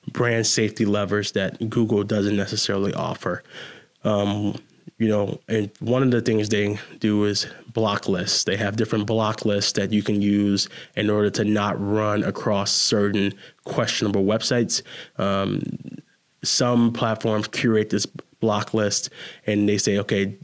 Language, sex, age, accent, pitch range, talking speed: English, male, 20-39, American, 105-115 Hz, 145 wpm